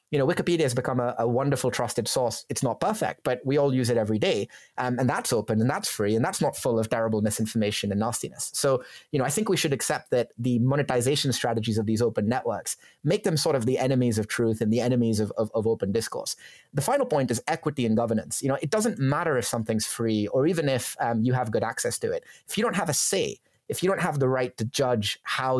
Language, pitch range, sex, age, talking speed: English, 115-140 Hz, male, 30-49, 255 wpm